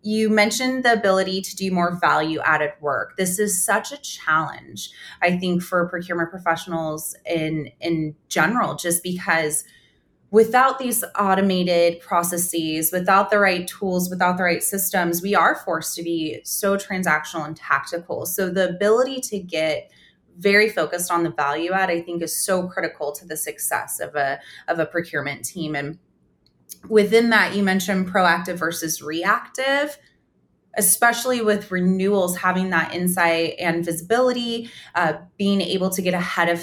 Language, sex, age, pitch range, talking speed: English, female, 20-39, 165-200 Hz, 155 wpm